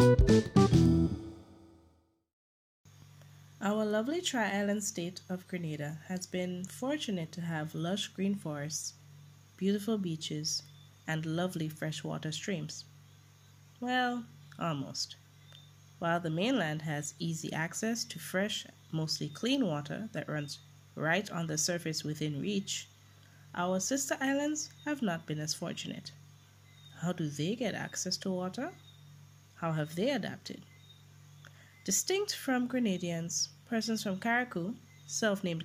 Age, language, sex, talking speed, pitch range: 20-39, English, female, 115 wpm, 140-195 Hz